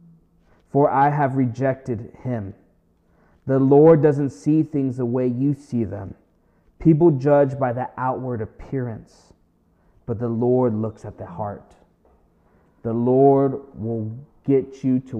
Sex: male